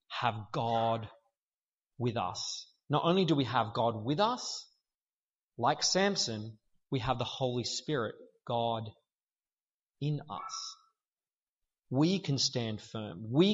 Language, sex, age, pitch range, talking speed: English, male, 30-49, 130-185 Hz, 120 wpm